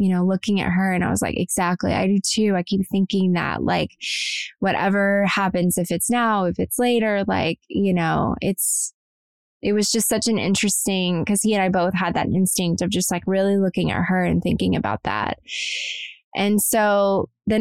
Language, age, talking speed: English, 20-39, 200 wpm